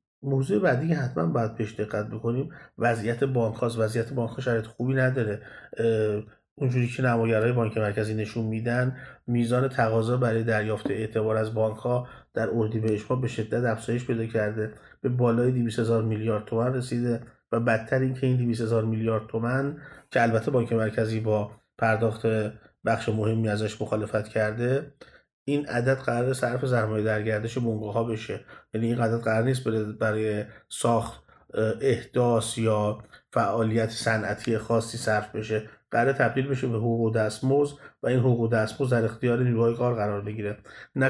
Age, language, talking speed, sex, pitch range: 30-49, Persian, 150 wpm, male, 110-125 Hz